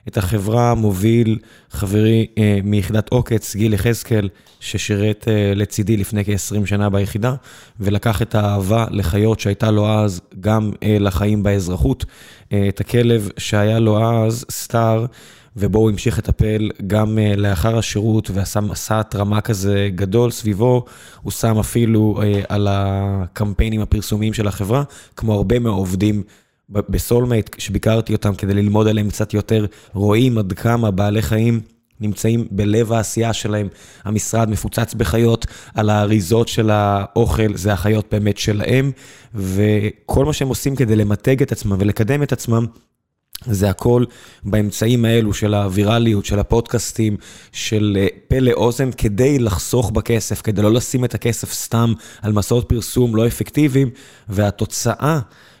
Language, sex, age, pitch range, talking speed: Hebrew, male, 20-39, 105-115 Hz, 135 wpm